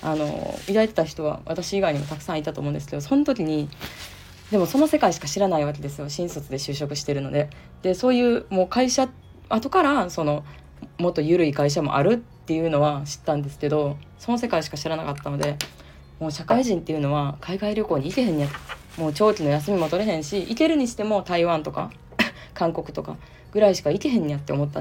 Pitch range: 145-210 Hz